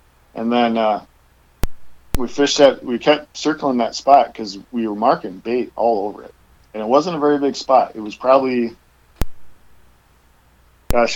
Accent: American